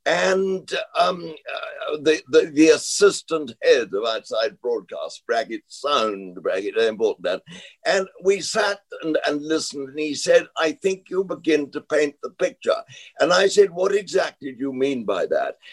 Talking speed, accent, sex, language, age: 170 wpm, British, male, English, 60-79